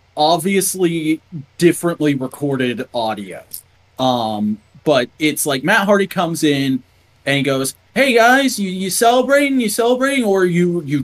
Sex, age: male, 30-49